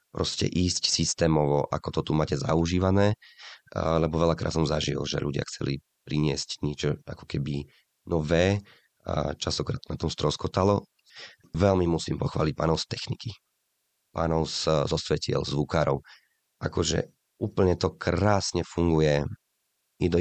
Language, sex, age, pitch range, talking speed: Slovak, male, 30-49, 75-95 Hz, 120 wpm